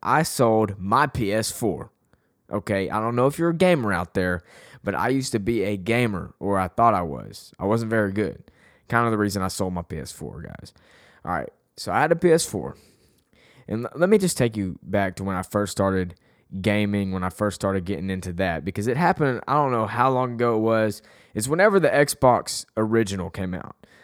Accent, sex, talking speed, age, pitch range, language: American, male, 210 wpm, 20-39, 95-120 Hz, English